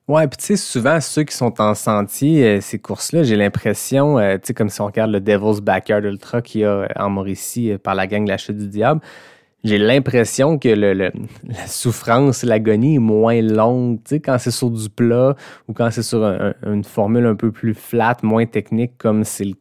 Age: 20-39